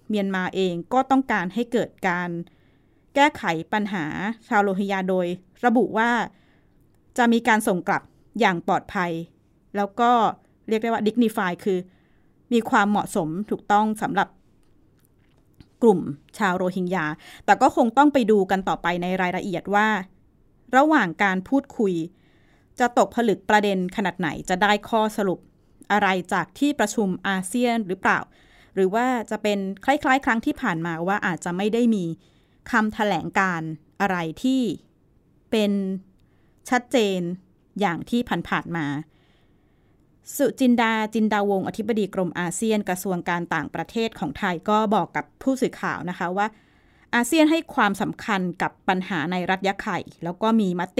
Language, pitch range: Thai, 180-225 Hz